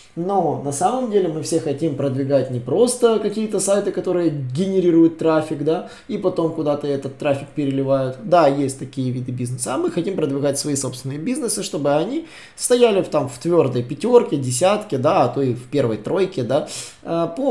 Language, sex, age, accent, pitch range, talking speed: Russian, male, 20-39, native, 135-175 Hz, 180 wpm